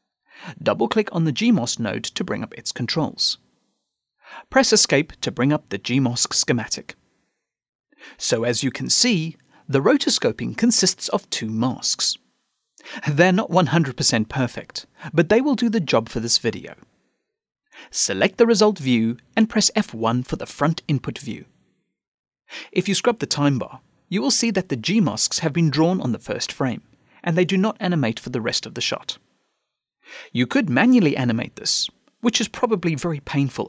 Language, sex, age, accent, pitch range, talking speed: English, male, 40-59, British, 125-195 Hz, 165 wpm